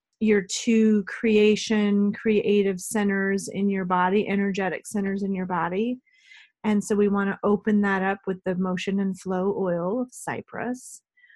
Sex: female